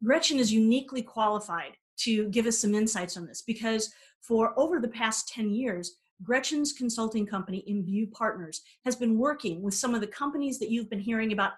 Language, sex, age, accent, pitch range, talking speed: English, female, 40-59, American, 200-250 Hz, 185 wpm